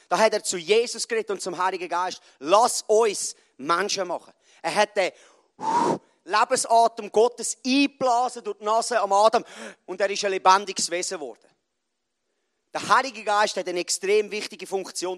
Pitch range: 185-245 Hz